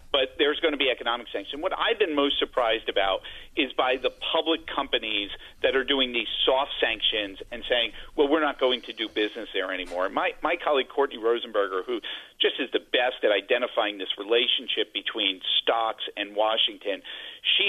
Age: 50-69